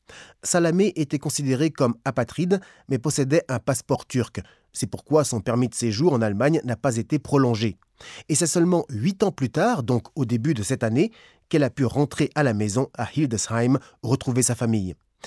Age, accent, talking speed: 30-49, French, 185 wpm